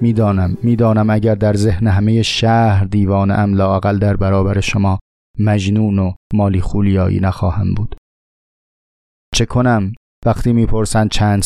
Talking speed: 125 wpm